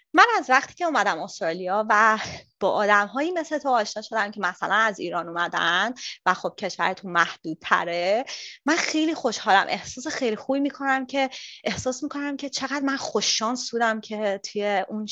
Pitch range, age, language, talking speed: 210-280 Hz, 20-39, Persian, 165 wpm